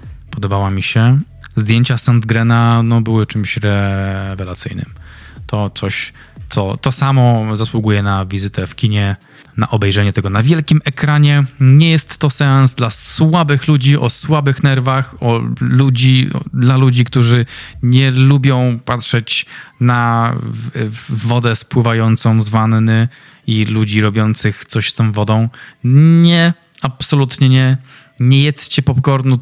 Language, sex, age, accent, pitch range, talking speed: Polish, male, 20-39, native, 110-135 Hz, 130 wpm